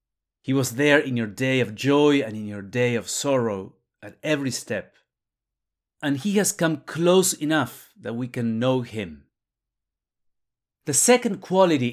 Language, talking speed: English, 155 wpm